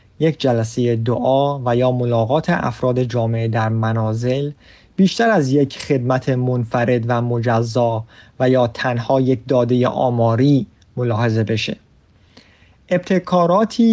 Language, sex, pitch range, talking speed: Persian, male, 120-160 Hz, 110 wpm